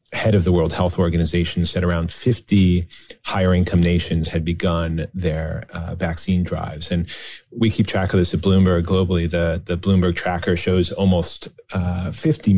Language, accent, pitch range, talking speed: English, American, 85-95 Hz, 165 wpm